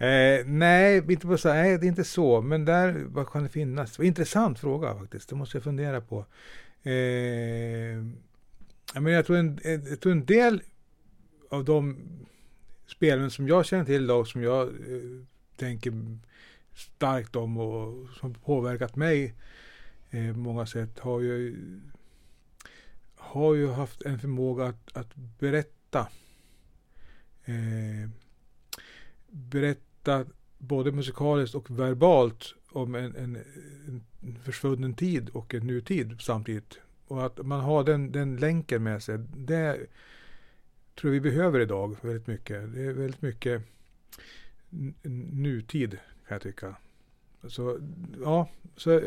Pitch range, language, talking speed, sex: 120-150 Hz, Swedish, 135 wpm, male